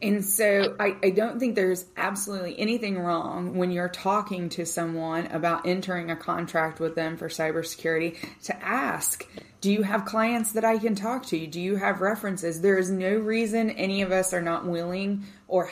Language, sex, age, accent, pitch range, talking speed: English, female, 20-39, American, 170-200 Hz, 185 wpm